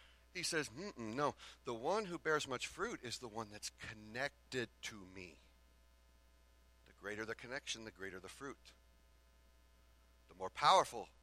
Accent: American